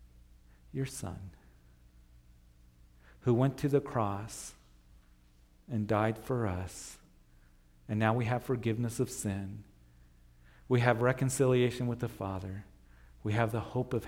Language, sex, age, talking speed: English, male, 50-69, 125 wpm